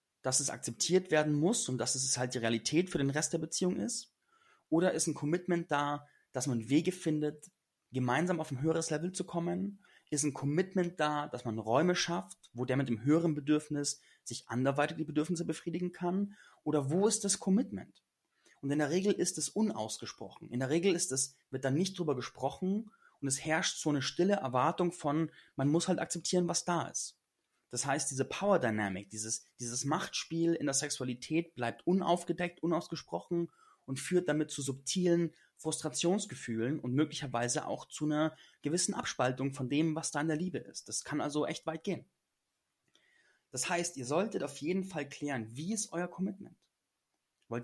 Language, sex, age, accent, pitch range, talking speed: German, male, 30-49, German, 130-175 Hz, 180 wpm